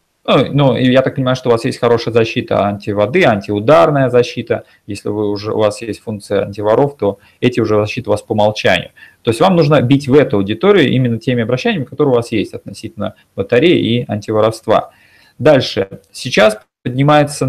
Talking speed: 175 wpm